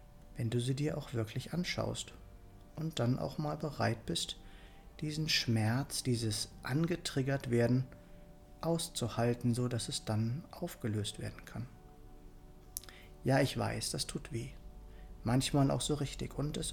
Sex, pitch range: male, 110-140 Hz